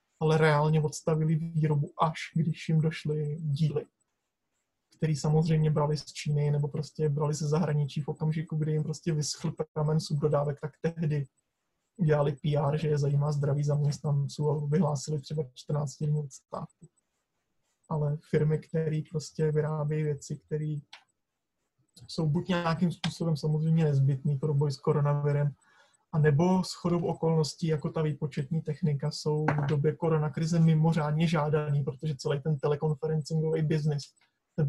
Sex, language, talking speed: male, Czech, 135 wpm